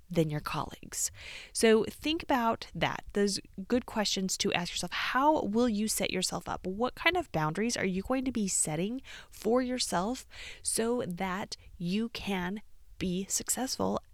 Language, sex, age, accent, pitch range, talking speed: English, female, 30-49, American, 180-245 Hz, 155 wpm